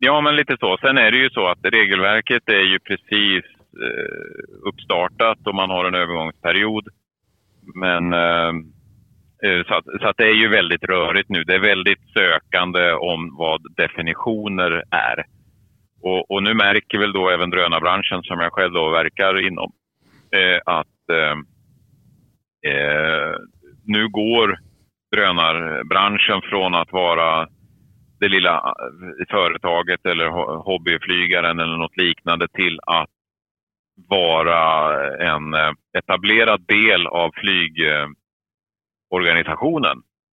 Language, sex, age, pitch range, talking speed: Swedish, male, 30-49, 85-105 Hz, 120 wpm